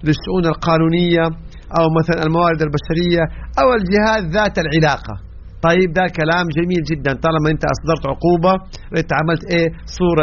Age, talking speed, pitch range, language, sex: 50-69, 135 wpm, 130-175 Hz, English, male